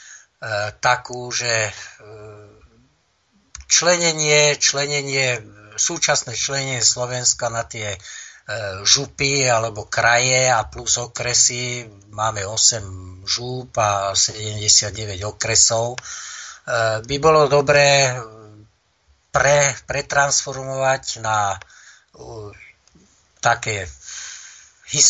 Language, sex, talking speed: Czech, male, 65 wpm